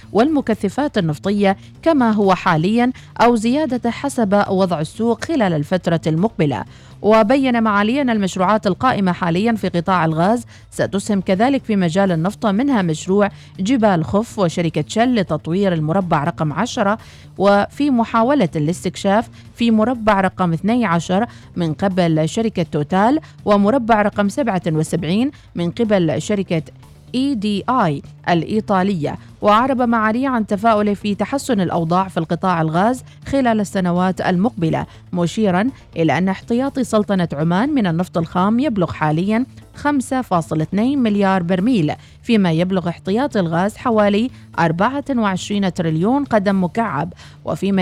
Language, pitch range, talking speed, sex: Arabic, 175-230 Hz, 115 wpm, female